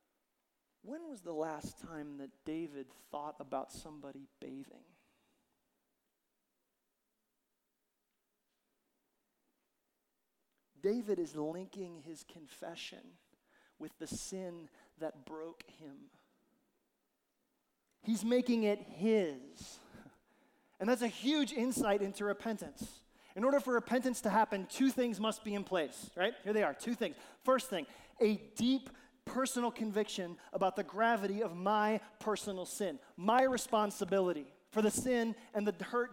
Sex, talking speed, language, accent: male, 120 wpm, English, American